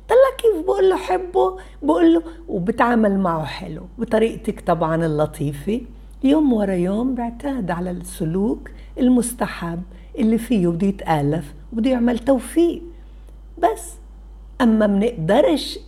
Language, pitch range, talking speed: Arabic, 190-300 Hz, 115 wpm